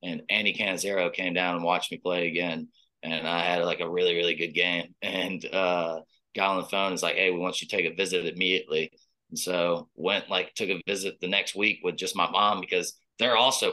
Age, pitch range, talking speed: 20-39, 90-100 Hz, 230 wpm